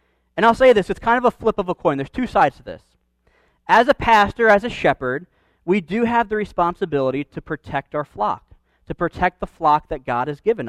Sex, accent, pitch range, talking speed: male, American, 140-190 Hz, 225 wpm